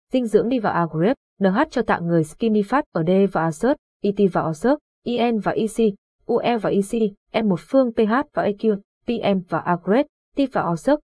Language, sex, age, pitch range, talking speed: Vietnamese, female, 20-39, 185-245 Hz, 195 wpm